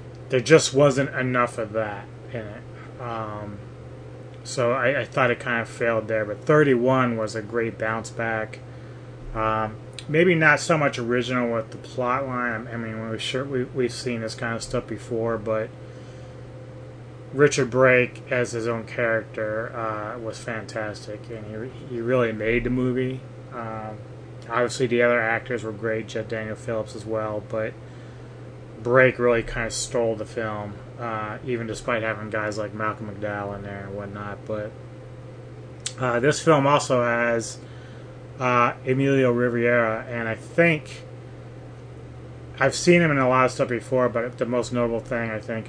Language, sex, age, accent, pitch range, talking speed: English, male, 20-39, American, 110-125 Hz, 160 wpm